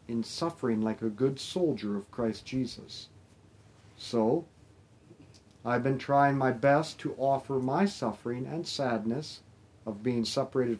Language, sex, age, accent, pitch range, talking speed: English, male, 50-69, American, 110-140 Hz, 135 wpm